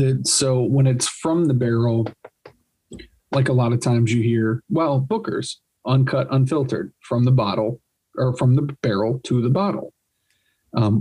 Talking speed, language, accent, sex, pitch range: 155 wpm, English, American, male, 115-130 Hz